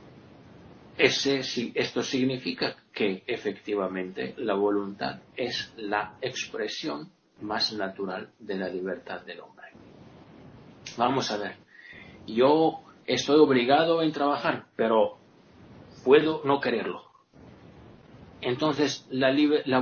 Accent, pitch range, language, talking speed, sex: Spanish, 100-140 Hz, Spanish, 95 wpm, male